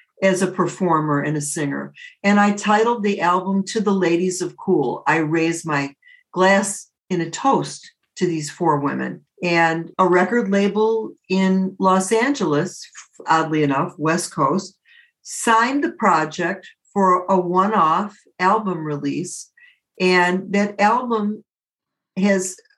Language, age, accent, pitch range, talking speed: English, 60-79, American, 160-210 Hz, 130 wpm